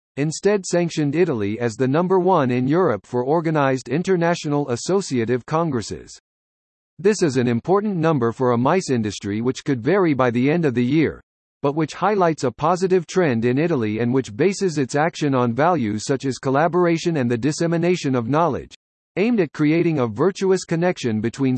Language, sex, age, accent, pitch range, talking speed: English, male, 50-69, American, 125-175 Hz, 170 wpm